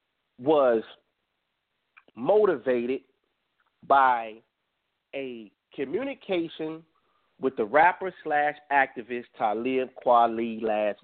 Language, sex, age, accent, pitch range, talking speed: English, male, 40-59, American, 125-165 Hz, 60 wpm